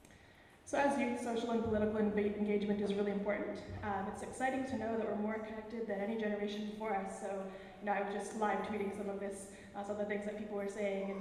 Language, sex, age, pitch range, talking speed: English, female, 20-39, 200-215 Hz, 230 wpm